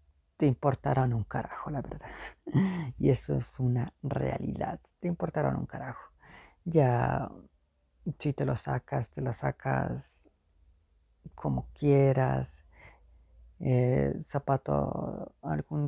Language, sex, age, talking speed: Spanish, female, 40-59, 105 wpm